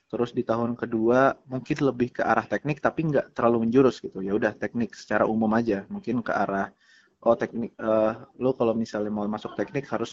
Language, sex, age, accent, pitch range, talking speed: Indonesian, male, 20-39, native, 110-130 Hz, 195 wpm